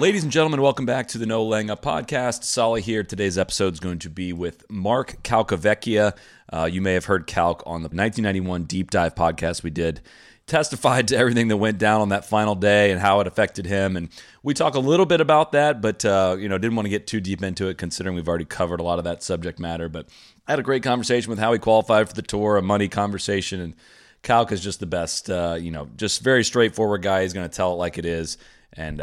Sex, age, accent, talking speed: male, 30-49, American, 245 wpm